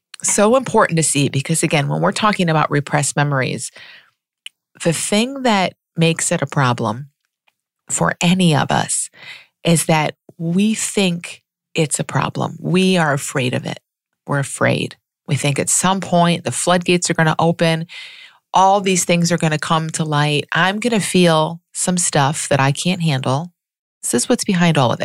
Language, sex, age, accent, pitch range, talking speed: English, female, 40-59, American, 150-200 Hz, 175 wpm